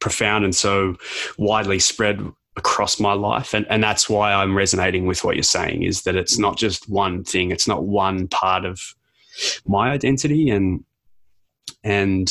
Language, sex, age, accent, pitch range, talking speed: English, male, 20-39, Australian, 95-105 Hz, 165 wpm